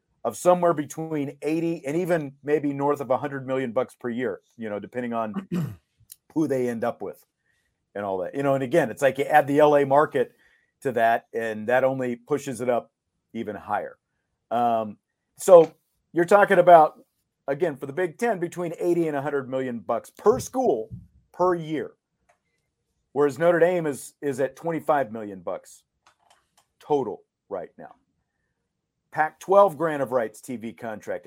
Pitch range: 125-165 Hz